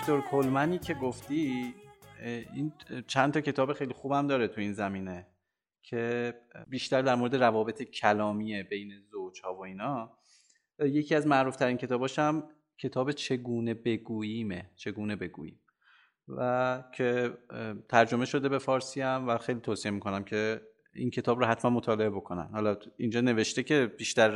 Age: 30-49